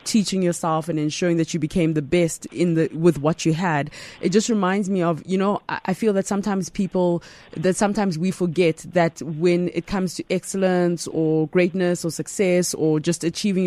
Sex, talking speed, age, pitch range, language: female, 195 wpm, 20-39, 155-175 Hz, English